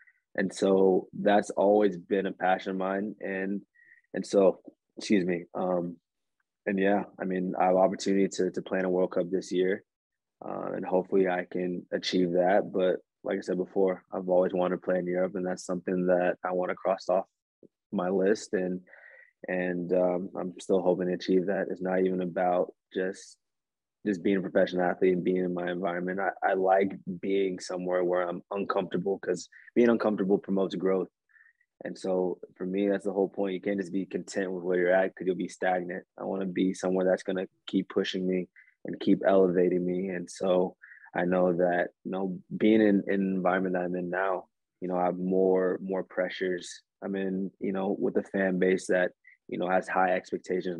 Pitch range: 90-95 Hz